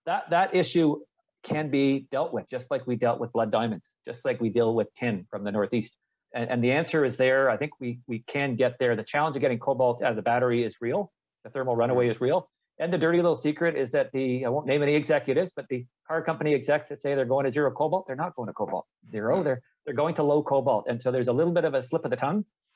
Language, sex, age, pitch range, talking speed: English, male, 40-59, 120-145 Hz, 265 wpm